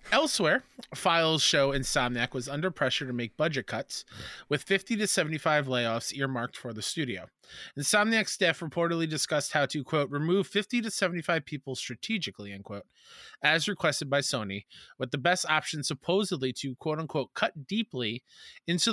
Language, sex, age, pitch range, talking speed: English, male, 20-39, 125-165 Hz, 160 wpm